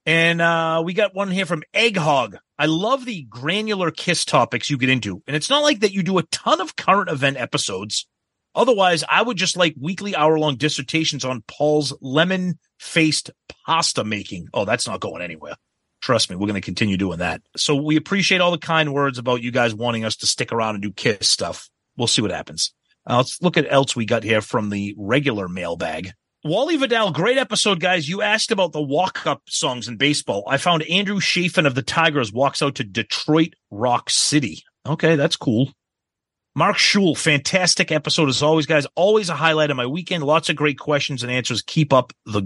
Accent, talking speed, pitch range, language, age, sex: American, 200 wpm, 115-165 Hz, English, 30-49, male